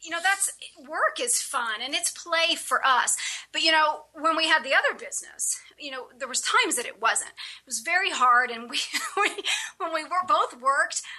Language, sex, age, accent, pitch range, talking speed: English, female, 40-59, American, 245-325 Hz, 215 wpm